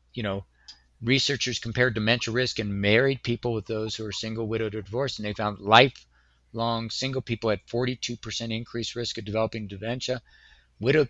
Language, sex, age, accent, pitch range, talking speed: English, male, 50-69, American, 100-125 Hz, 170 wpm